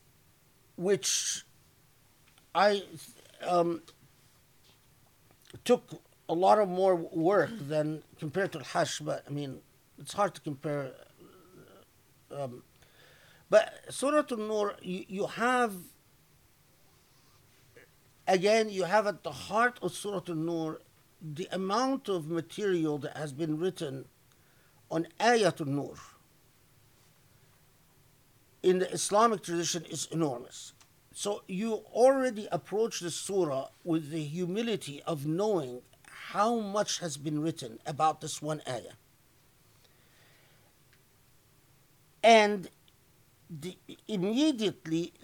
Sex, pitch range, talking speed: male, 140-200 Hz, 100 wpm